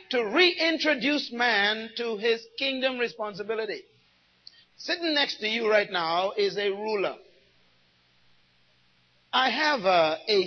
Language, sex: English, male